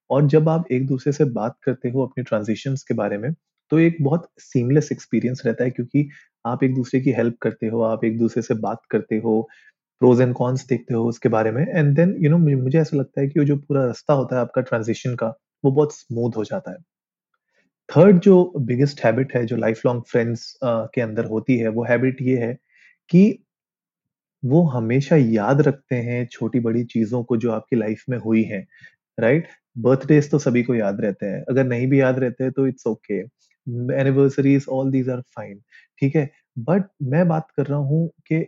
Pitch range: 115-140 Hz